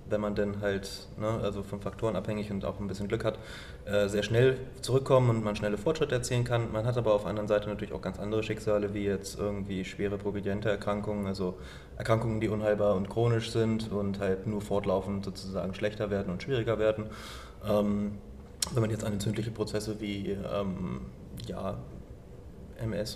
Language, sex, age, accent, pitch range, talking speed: German, male, 20-39, German, 100-110 Hz, 185 wpm